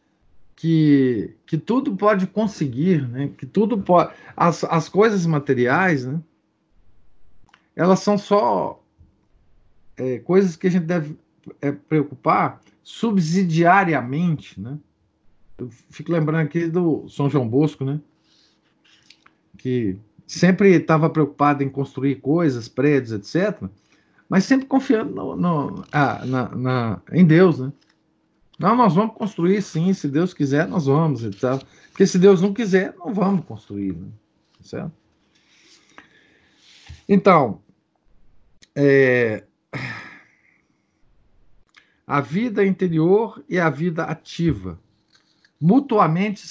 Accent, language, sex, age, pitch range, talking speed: Brazilian, Portuguese, male, 50-69, 130-180 Hz, 100 wpm